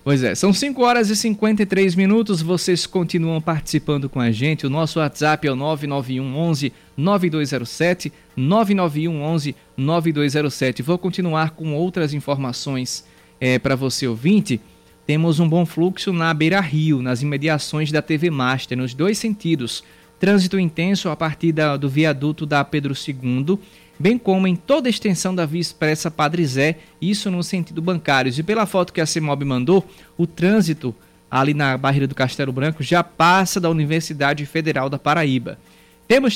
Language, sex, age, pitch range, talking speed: Portuguese, male, 20-39, 140-180 Hz, 160 wpm